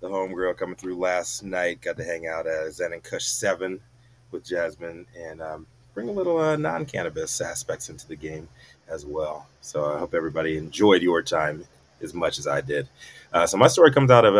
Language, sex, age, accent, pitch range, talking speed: English, male, 30-49, American, 80-120 Hz, 205 wpm